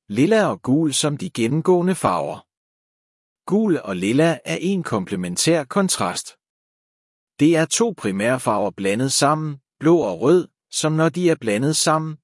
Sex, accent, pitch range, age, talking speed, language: male, native, 135-175 Hz, 60-79, 140 wpm, Danish